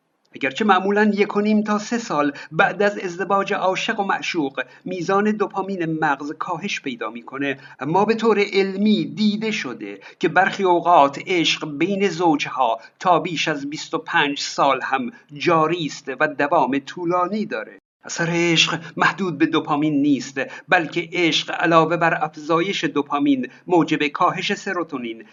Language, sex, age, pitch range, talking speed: Persian, male, 50-69, 150-190 Hz, 135 wpm